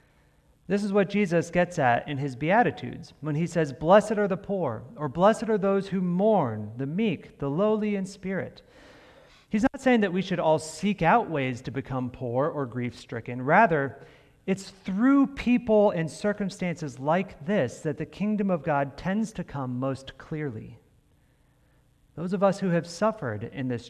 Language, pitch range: English, 130-180 Hz